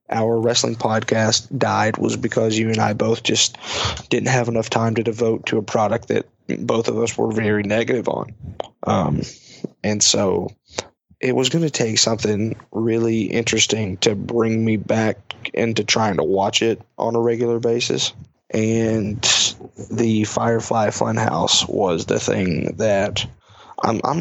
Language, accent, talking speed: English, American, 155 wpm